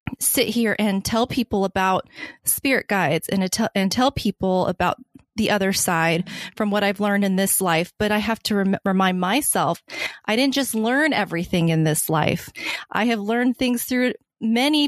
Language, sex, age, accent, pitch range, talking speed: English, female, 20-39, American, 185-220 Hz, 175 wpm